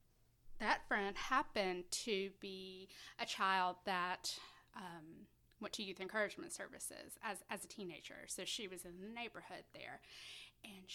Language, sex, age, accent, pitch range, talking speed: English, female, 20-39, American, 180-210 Hz, 145 wpm